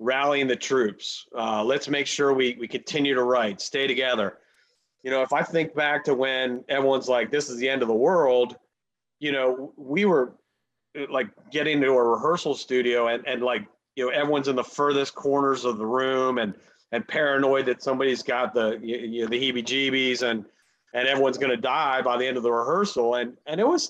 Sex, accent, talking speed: male, American, 205 wpm